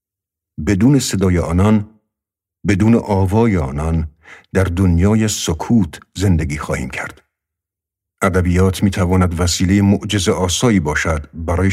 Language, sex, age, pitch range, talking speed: Persian, male, 50-69, 85-100 Hz, 100 wpm